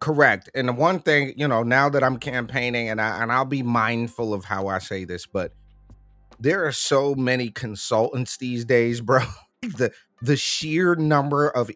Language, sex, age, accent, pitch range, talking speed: English, male, 30-49, American, 120-155 Hz, 195 wpm